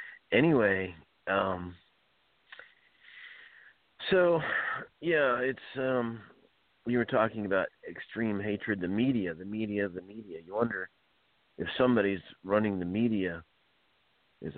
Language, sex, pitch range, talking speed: English, male, 85-110 Hz, 105 wpm